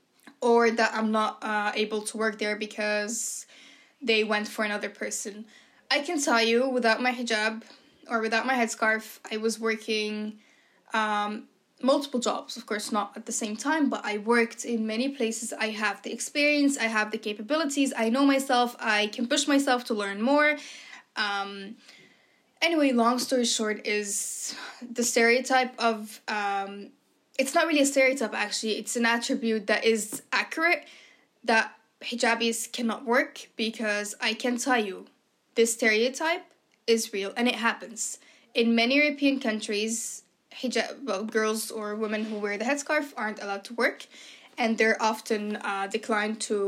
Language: English